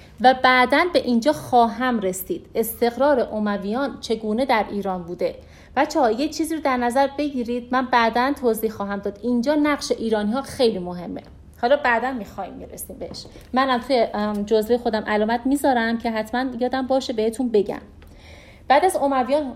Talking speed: 155 wpm